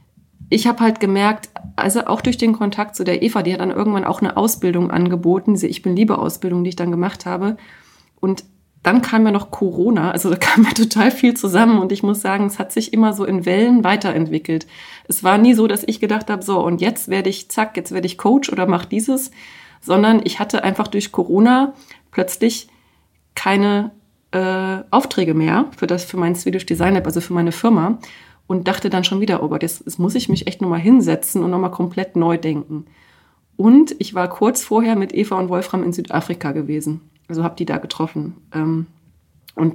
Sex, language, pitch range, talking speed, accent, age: female, German, 175-215 Hz, 205 wpm, German, 30-49